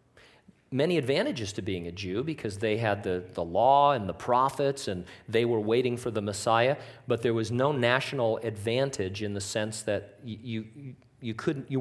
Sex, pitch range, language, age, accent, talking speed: male, 110-135 Hz, English, 40-59, American, 190 wpm